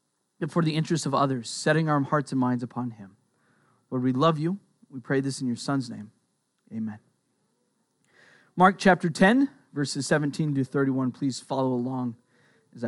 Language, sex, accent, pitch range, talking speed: English, male, American, 135-205 Hz, 170 wpm